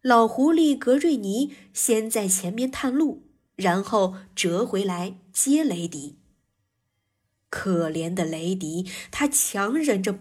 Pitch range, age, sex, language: 185-270 Hz, 20-39, female, Chinese